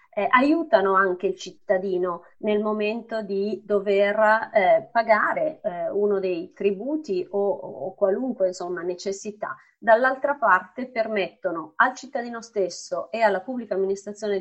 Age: 30-49